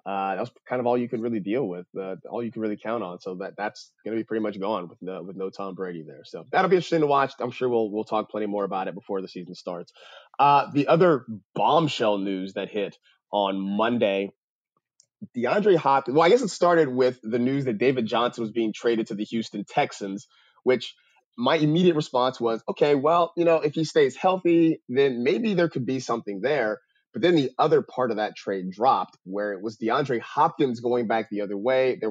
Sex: male